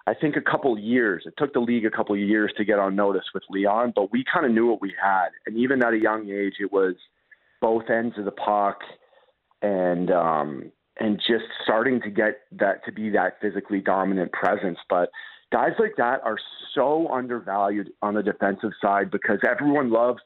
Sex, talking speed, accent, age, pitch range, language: male, 205 wpm, American, 40-59, 100-120 Hz, English